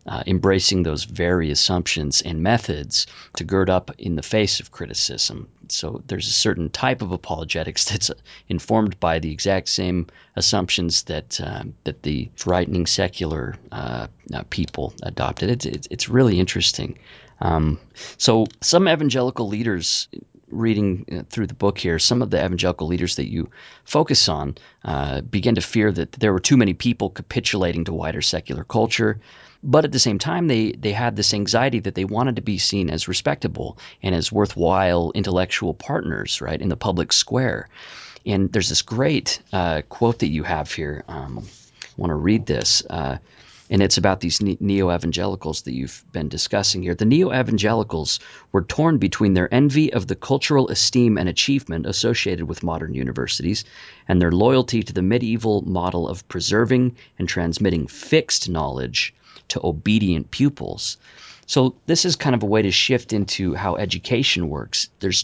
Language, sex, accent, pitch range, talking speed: English, male, American, 85-115 Hz, 165 wpm